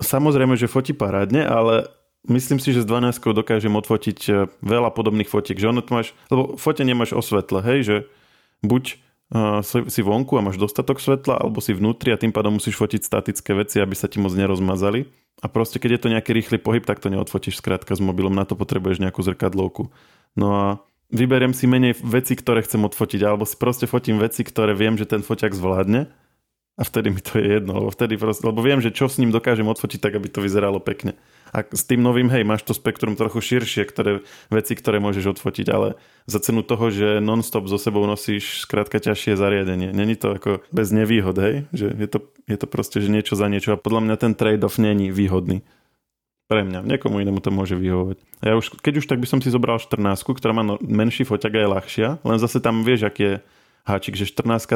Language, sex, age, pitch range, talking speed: Slovak, male, 20-39, 100-120 Hz, 215 wpm